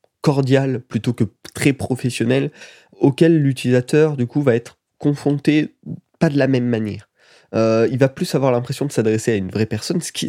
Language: French